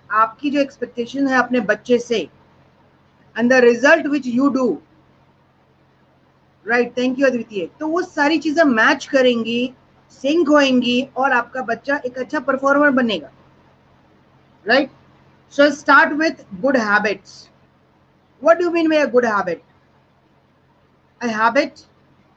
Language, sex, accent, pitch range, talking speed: Hindi, female, native, 225-275 Hz, 105 wpm